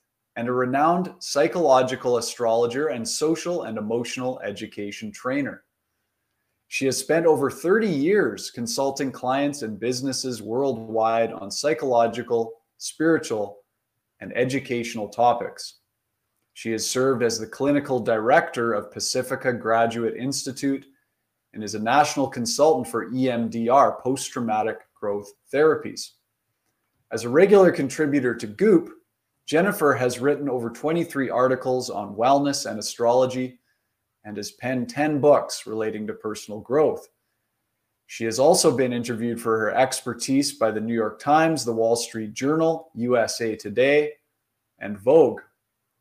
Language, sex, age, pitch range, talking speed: English, male, 20-39, 115-135 Hz, 125 wpm